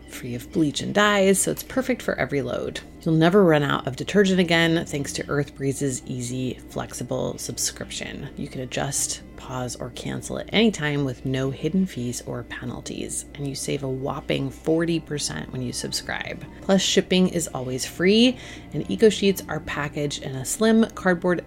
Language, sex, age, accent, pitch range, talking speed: English, female, 30-49, American, 135-190 Hz, 175 wpm